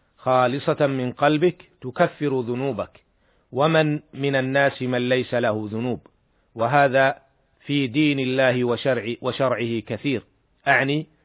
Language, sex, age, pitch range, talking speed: Arabic, male, 40-59, 125-140 Hz, 105 wpm